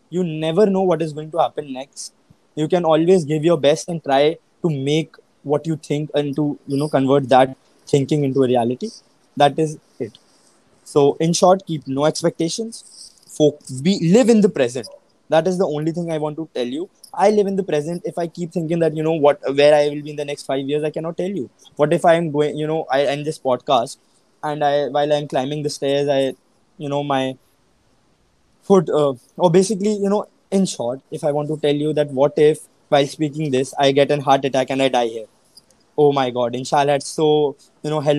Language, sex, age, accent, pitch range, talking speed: English, male, 20-39, Indian, 140-180 Hz, 220 wpm